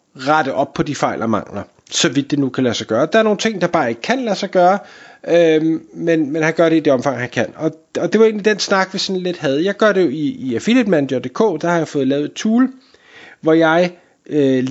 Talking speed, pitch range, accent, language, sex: 265 wpm, 140-185 Hz, native, Danish, male